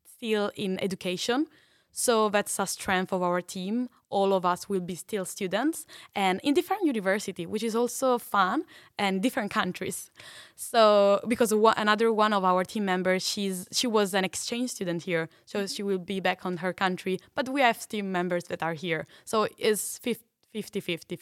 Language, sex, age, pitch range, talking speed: English, female, 10-29, 185-220 Hz, 175 wpm